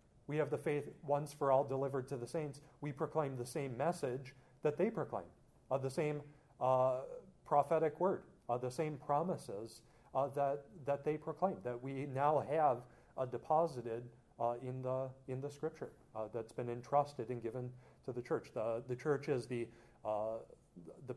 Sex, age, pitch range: male, 40-59, 125-155 Hz